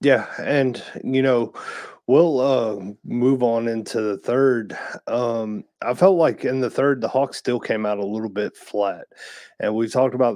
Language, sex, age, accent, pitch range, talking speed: English, male, 30-49, American, 105-120 Hz, 180 wpm